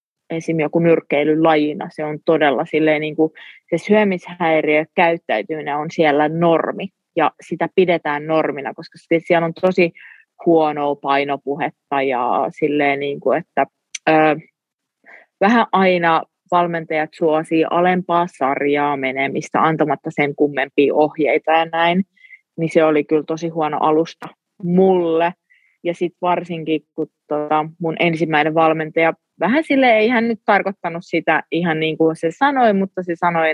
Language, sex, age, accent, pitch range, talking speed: Finnish, female, 30-49, native, 155-175 Hz, 115 wpm